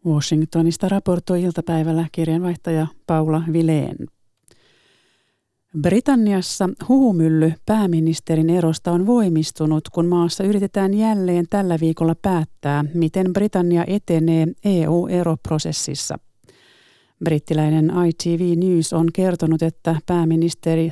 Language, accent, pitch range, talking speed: Finnish, native, 165-195 Hz, 85 wpm